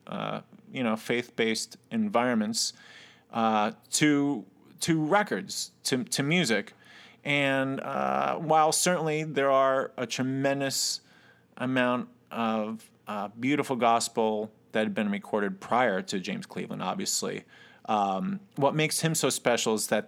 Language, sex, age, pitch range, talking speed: English, male, 30-49, 110-170 Hz, 125 wpm